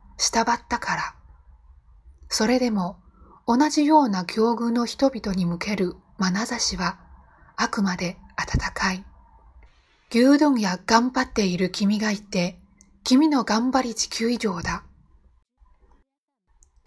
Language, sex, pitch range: Chinese, female, 185-240 Hz